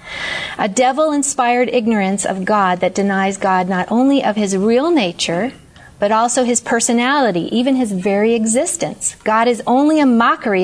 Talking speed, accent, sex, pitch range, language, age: 150 wpm, American, female, 195-250 Hz, English, 40-59